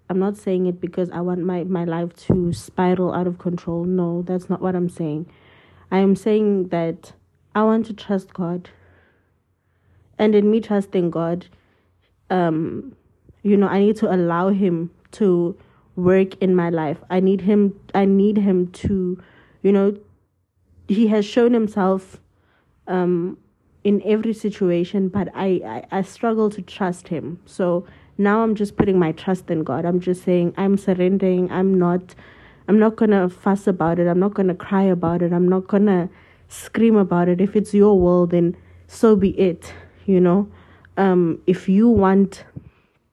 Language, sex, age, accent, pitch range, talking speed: English, female, 20-39, South African, 170-200 Hz, 175 wpm